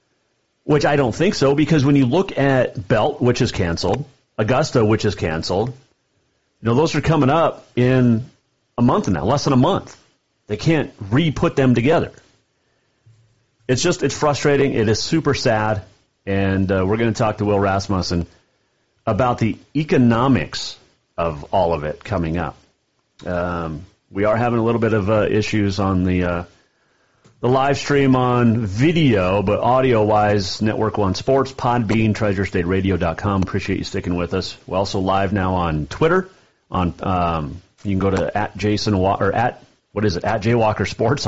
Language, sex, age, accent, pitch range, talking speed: English, male, 40-59, American, 95-135 Hz, 170 wpm